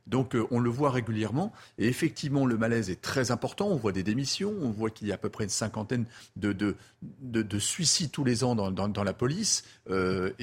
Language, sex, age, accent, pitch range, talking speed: French, male, 40-59, French, 115-160 Hz, 230 wpm